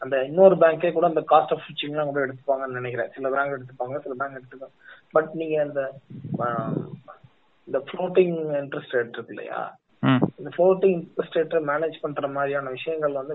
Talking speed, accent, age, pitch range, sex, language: 110 wpm, native, 20-39, 135-160 Hz, male, Tamil